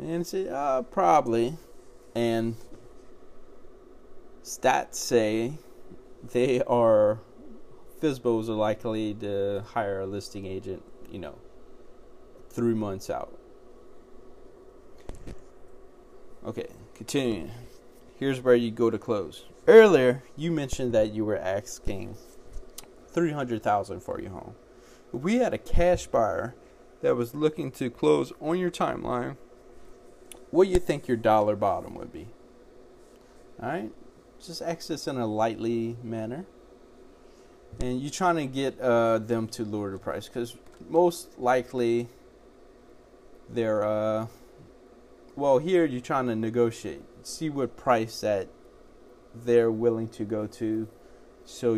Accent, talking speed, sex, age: American, 120 wpm, male, 20-39